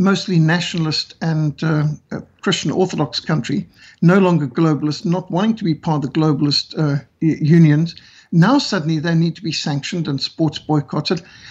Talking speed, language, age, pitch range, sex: 155 wpm, English, 60-79, 170-220 Hz, male